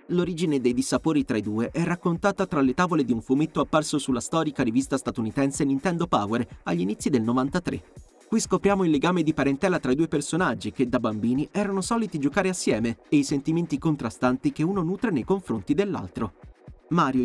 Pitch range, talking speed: 130-180 Hz, 185 wpm